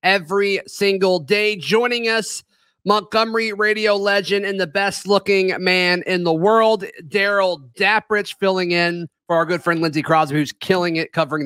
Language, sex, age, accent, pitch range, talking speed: English, male, 30-49, American, 170-205 Hz, 155 wpm